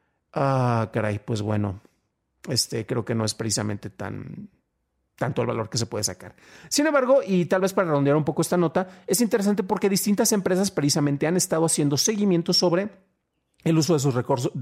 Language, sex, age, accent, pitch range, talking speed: Spanish, male, 40-59, Mexican, 130-175 Hz, 190 wpm